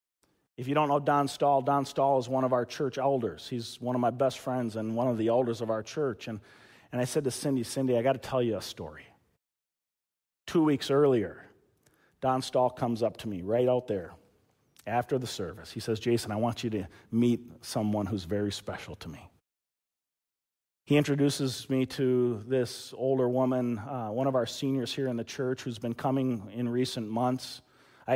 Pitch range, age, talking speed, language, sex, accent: 115-135 Hz, 40-59, 200 wpm, English, male, American